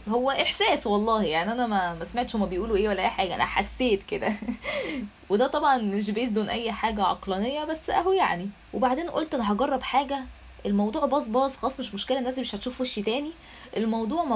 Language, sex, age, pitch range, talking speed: Arabic, female, 10-29, 195-265 Hz, 195 wpm